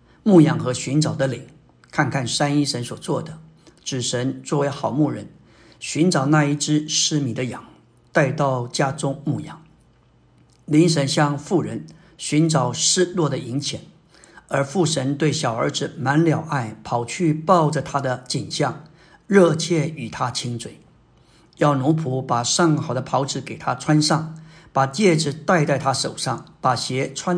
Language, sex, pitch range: Chinese, male, 130-160 Hz